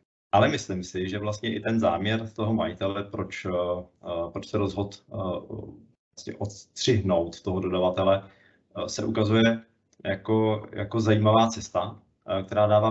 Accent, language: native, Czech